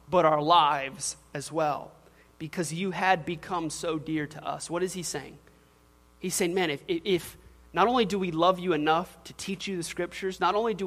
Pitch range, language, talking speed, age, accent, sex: 150-190 Hz, English, 205 wpm, 30-49, American, male